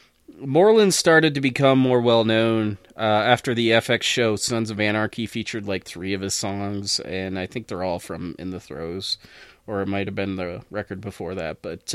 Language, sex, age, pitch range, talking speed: English, male, 30-49, 100-120 Hz, 190 wpm